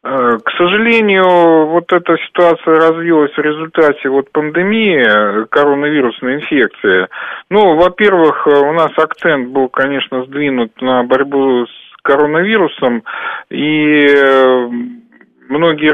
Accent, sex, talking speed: native, male, 100 wpm